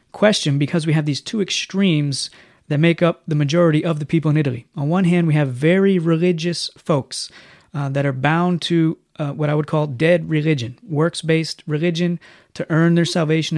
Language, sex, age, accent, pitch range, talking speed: English, male, 30-49, American, 145-170 Hz, 190 wpm